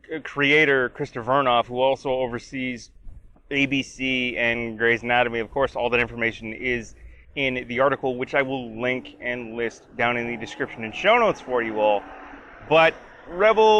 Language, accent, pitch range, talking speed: English, American, 120-145 Hz, 160 wpm